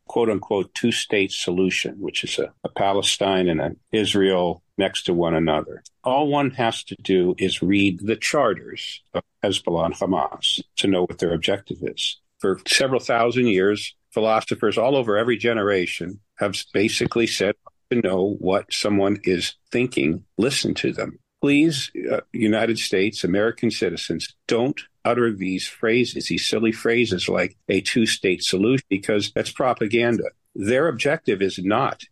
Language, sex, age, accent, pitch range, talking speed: English, male, 50-69, American, 95-120 Hz, 145 wpm